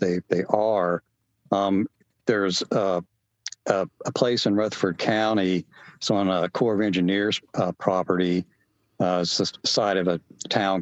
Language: English